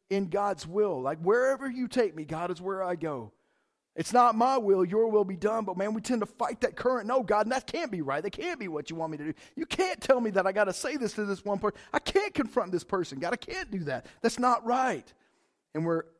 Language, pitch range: English, 165-220 Hz